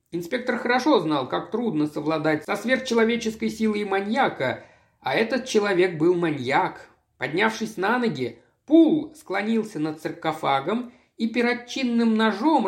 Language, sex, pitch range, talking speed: Russian, male, 165-230 Hz, 120 wpm